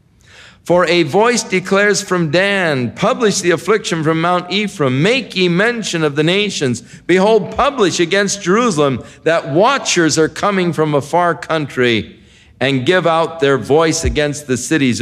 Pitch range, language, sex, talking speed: 120-175 Hz, English, male, 150 wpm